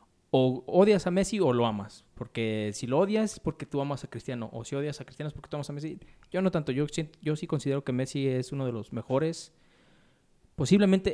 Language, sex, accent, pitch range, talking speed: Spanish, male, Mexican, 120-160 Hz, 230 wpm